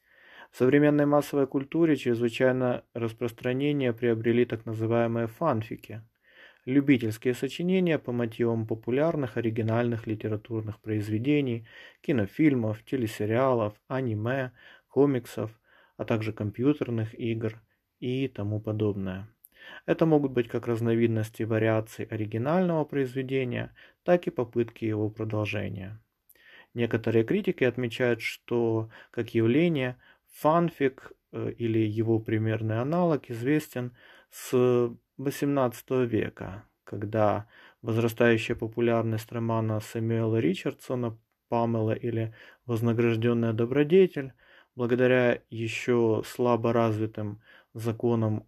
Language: Russian